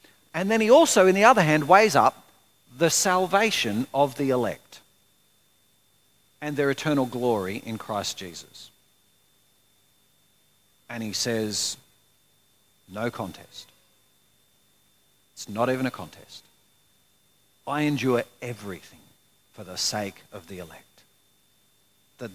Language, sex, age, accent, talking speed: English, male, 50-69, Australian, 115 wpm